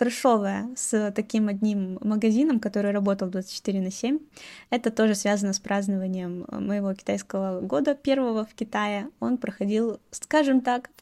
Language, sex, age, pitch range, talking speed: Russian, female, 20-39, 190-250 Hz, 135 wpm